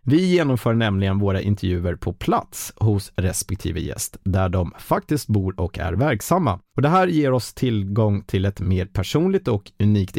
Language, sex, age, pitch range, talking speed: Swedish, male, 30-49, 95-125 Hz, 170 wpm